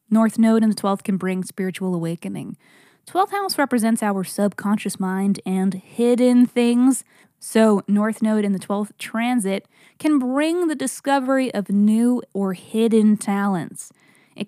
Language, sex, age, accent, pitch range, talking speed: English, female, 20-39, American, 195-235 Hz, 145 wpm